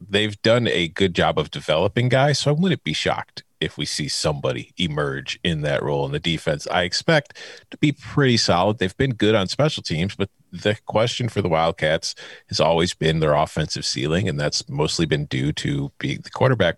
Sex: male